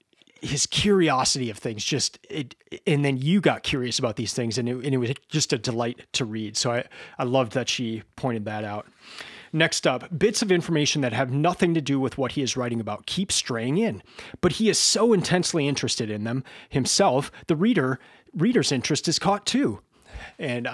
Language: English